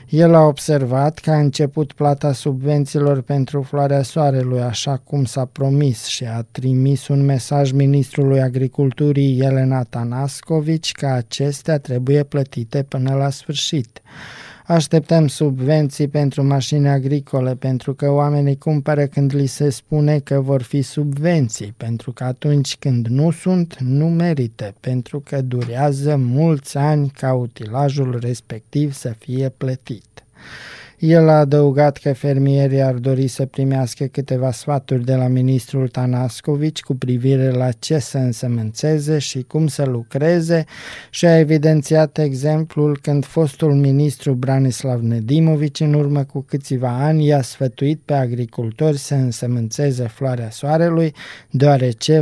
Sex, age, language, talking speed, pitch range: male, 20-39, Romanian, 130 wpm, 130-150 Hz